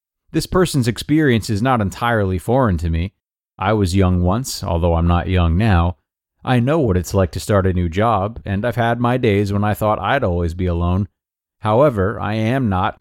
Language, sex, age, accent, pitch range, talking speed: English, male, 30-49, American, 95-115 Hz, 205 wpm